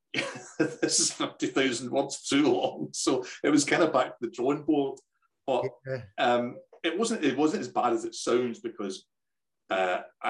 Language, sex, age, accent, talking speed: English, male, 30-49, British, 175 wpm